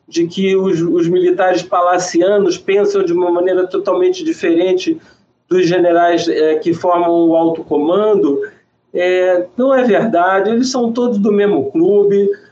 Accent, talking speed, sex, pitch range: Brazilian, 145 wpm, male, 175-250 Hz